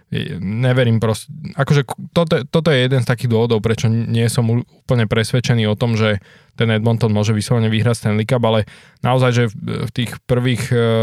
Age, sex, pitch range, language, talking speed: 20-39, male, 110-125 Hz, Slovak, 180 wpm